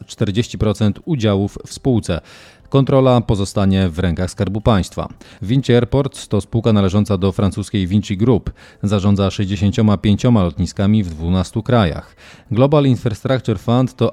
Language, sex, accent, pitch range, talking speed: Polish, male, native, 95-120 Hz, 120 wpm